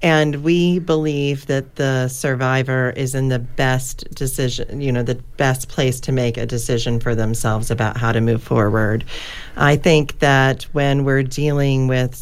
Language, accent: English, American